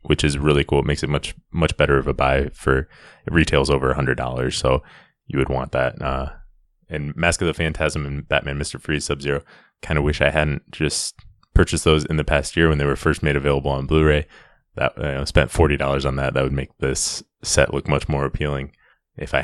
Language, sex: English, male